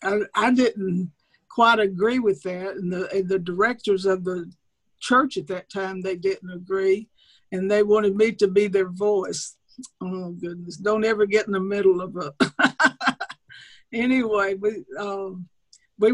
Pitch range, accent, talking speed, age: 190-220 Hz, American, 160 wpm, 60-79